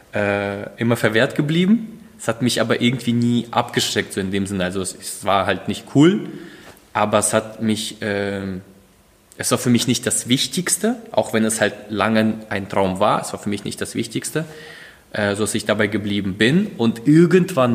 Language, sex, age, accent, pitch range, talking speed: German, male, 20-39, German, 100-125 Hz, 190 wpm